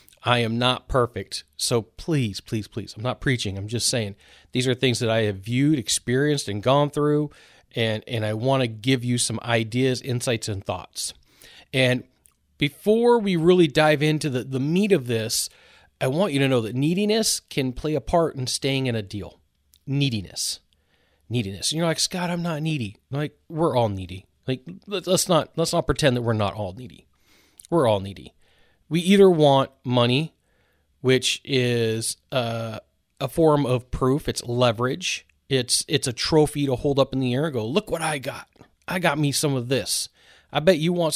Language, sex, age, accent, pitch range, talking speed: English, male, 30-49, American, 115-155 Hz, 190 wpm